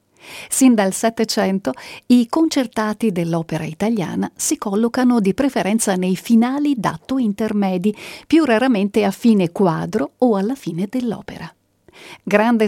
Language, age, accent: Italian, 50-69, native